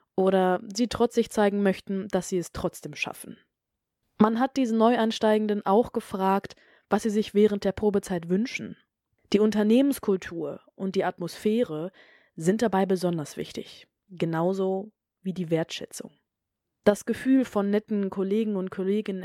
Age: 20-39